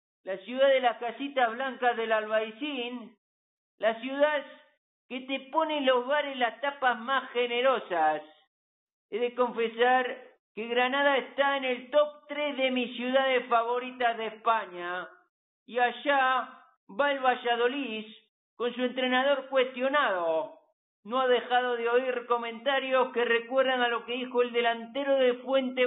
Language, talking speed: Spanish, 140 wpm